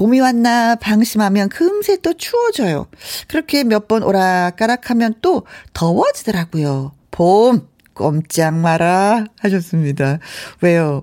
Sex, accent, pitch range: female, native, 175-245 Hz